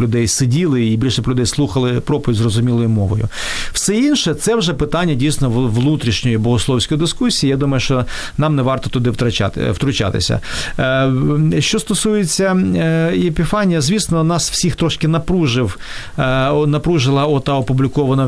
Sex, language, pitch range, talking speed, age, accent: male, Ukrainian, 115-140 Hz, 130 wpm, 40-59, native